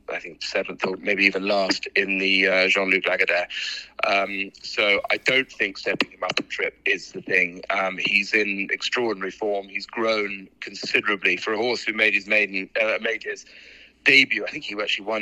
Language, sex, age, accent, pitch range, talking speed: English, male, 30-49, British, 95-105 Hz, 190 wpm